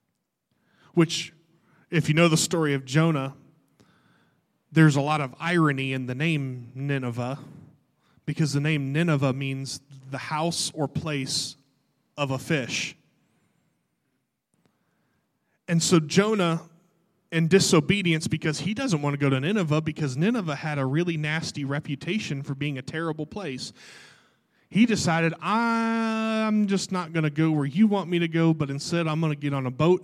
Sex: male